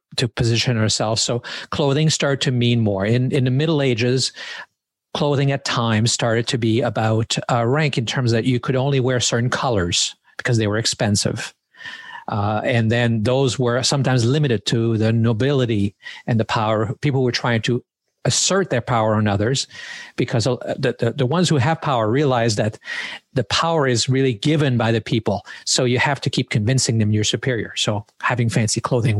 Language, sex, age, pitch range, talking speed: English, male, 50-69, 110-135 Hz, 185 wpm